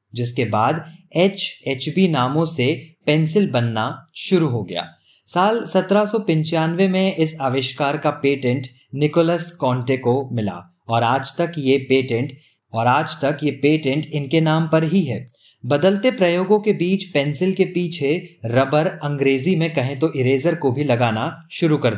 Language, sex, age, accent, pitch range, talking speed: Hindi, male, 20-39, native, 120-165 Hz, 150 wpm